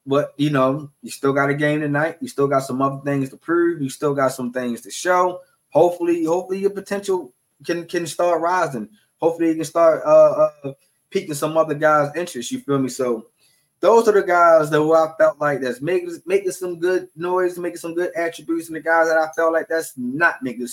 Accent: American